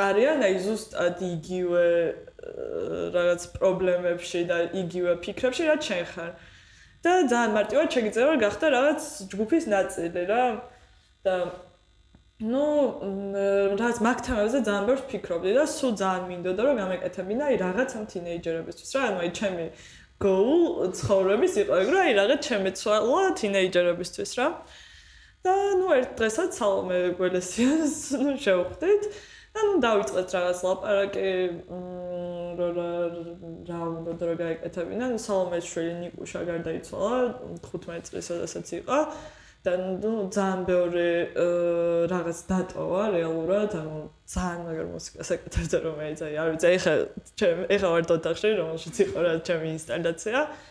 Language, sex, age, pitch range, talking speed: English, female, 20-39, 175-245 Hz, 50 wpm